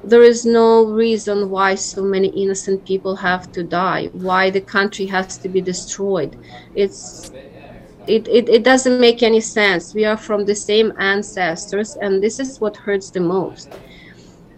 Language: English